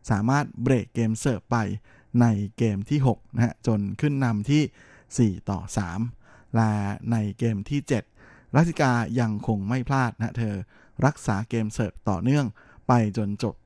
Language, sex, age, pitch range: Thai, male, 20-39, 110-130 Hz